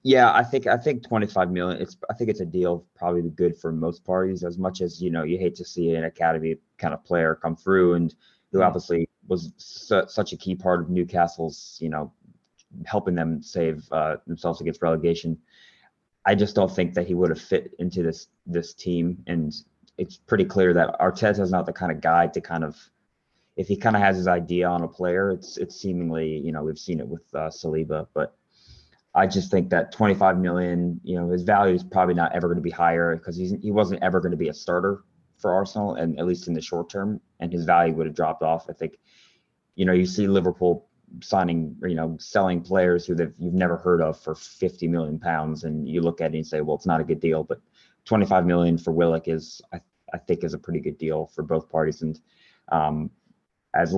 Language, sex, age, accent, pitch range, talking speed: English, male, 20-39, American, 80-90 Hz, 225 wpm